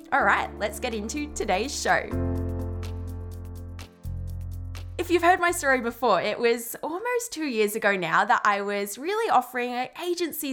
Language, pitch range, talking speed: English, 210-300 Hz, 155 wpm